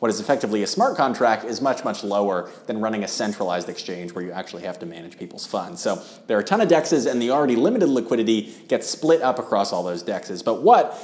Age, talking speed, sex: 30-49, 240 wpm, male